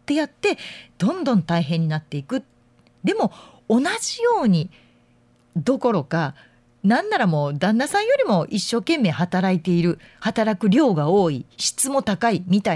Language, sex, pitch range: Japanese, female, 150-215 Hz